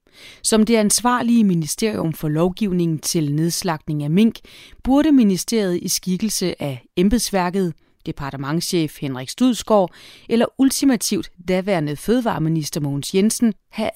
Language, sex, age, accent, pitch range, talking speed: Danish, female, 30-49, native, 165-225 Hz, 110 wpm